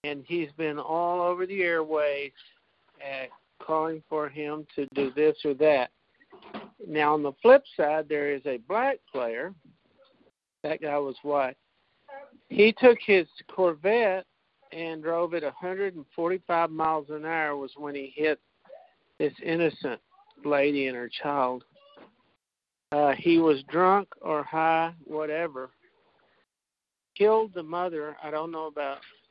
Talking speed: 135 wpm